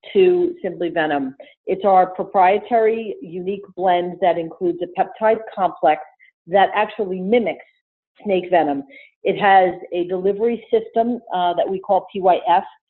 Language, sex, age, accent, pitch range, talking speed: English, female, 50-69, American, 175-215 Hz, 130 wpm